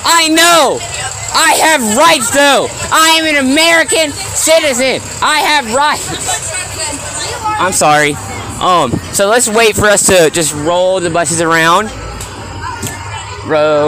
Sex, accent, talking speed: male, American, 125 wpm